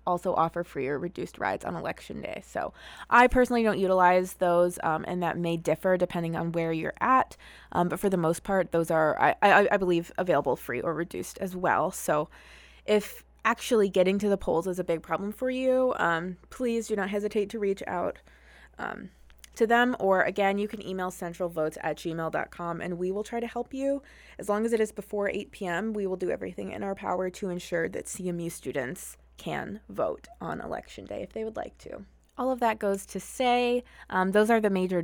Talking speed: 210 wpm